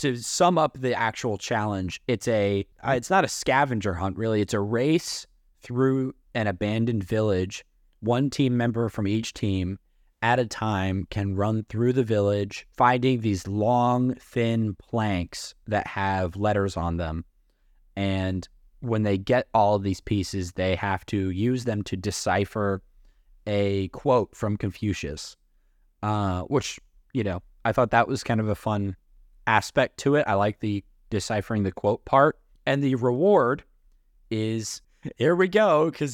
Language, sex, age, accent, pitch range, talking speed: English, male, 20-39, American, 95-130 Hz, 155 wpm